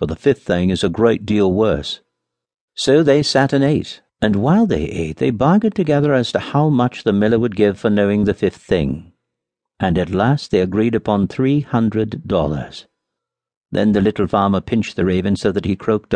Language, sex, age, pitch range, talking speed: English, male, 60-79, 90-125 Hz, 200 wpm